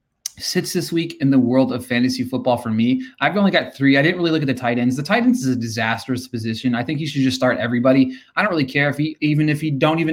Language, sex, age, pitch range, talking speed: English, male, 20-39, 125-165 Hz, 285 wpm